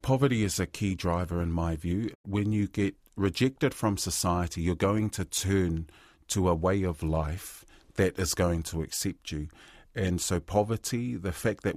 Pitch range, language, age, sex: 80-95 Hz, English, 40-59, male